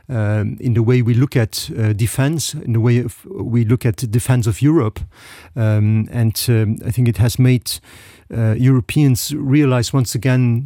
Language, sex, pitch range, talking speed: English, male, 110-130 Hz, 185 wpm